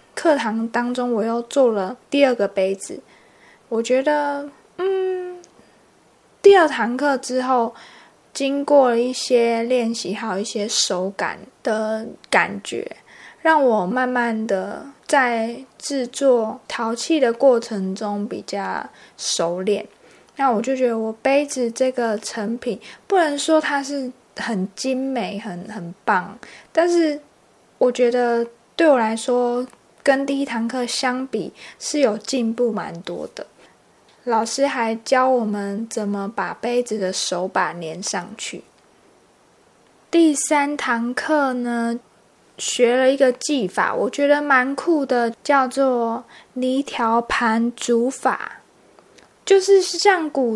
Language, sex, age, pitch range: Chinese, female, 20-39, 225-275 Hz